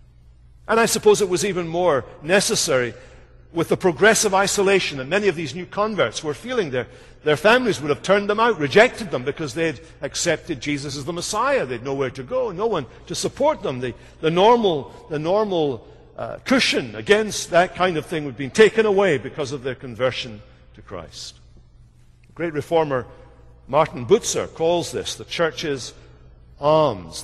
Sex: male